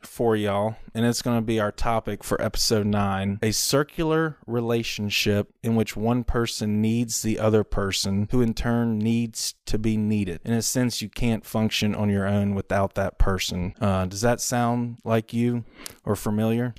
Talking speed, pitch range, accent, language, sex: 180 wpm, 100-115 Hz, American, English, male